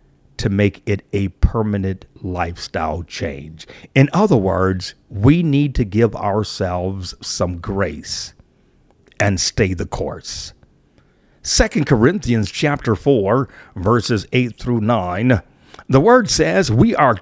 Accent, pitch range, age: American, 100-140 Hz, 50-69